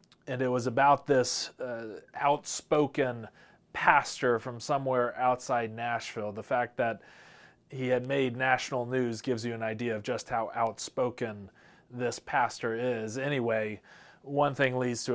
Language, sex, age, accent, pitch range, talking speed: English, male, 30-49, American, 110-135 Hz, 145 wpm